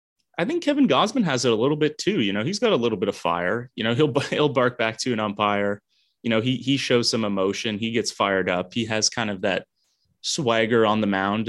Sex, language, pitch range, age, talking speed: male, English, 105-135 Hz, 20-39, 250 wpm